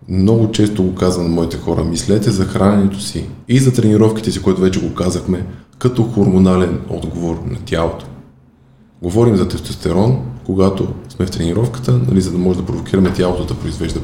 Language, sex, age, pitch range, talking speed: Bulgarian, male, 20-39, 90-115 Hz, 170 wpm